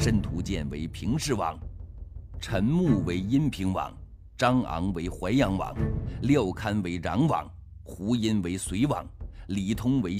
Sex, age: male, 50-69